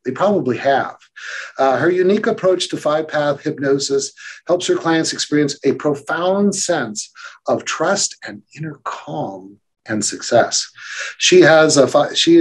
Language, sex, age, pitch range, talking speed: English, male, 50-69, 135-165 Hz, 145 wpm